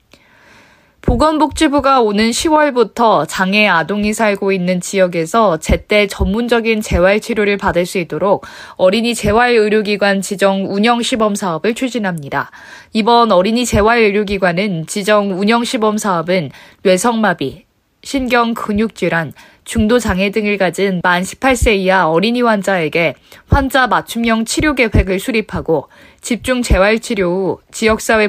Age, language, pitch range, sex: 20-39, Korean, 185-235 Hz, female